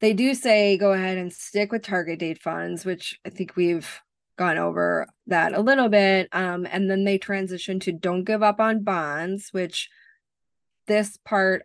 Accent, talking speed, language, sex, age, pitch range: American, 180 wpm, English, female, 20-39, 165-195 Hz